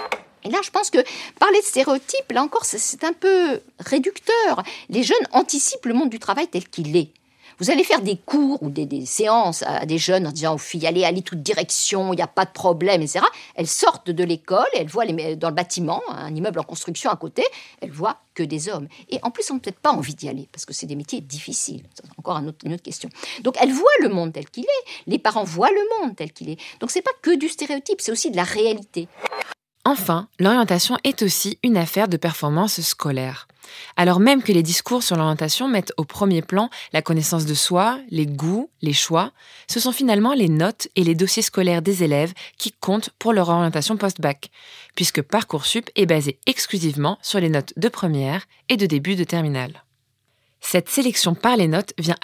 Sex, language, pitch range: female, French, 160-235 Hz